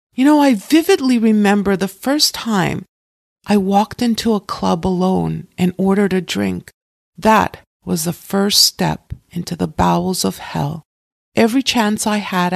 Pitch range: 175-215 Hz